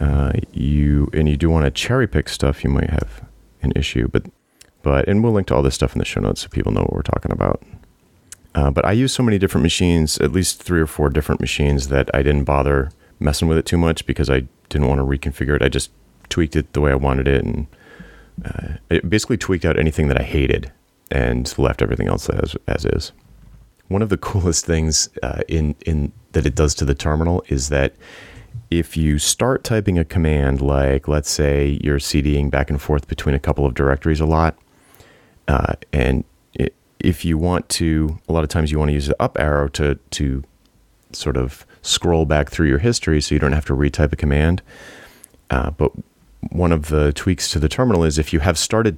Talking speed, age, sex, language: 220 wpm, 30-49, male, English